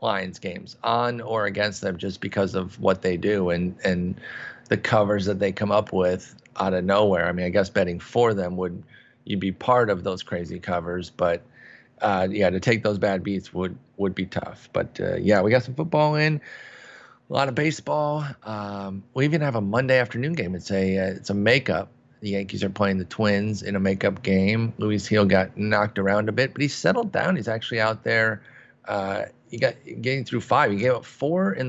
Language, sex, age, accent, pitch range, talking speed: English, male, 30-49, American, 100-130 Hz, 215 wpm